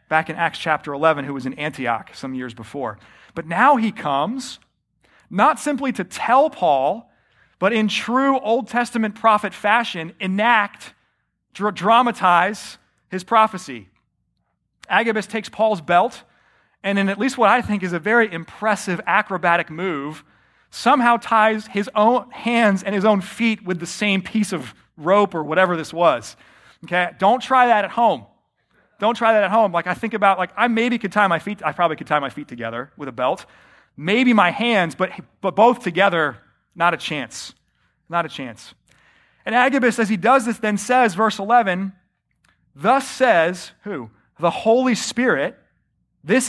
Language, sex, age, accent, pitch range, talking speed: English, male, 30-49, American, 150-220 Hz, 170 wpm